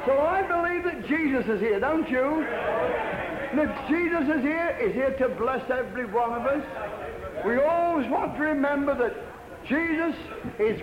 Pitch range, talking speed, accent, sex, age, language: 190-275 Hz, 160 wpm, British, male, 60-79, English